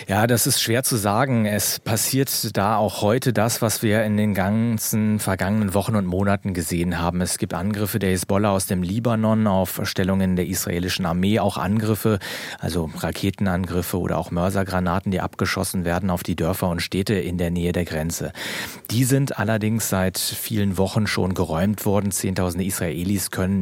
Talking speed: 175 wpm